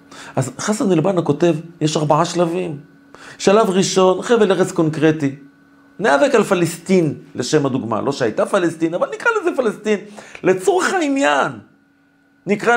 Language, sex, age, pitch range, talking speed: Hebrew, male, 40-59, 135-210 Hz, 125 wpm